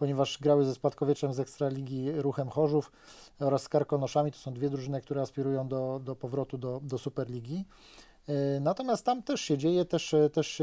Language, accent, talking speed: Polish, native, 170 wpm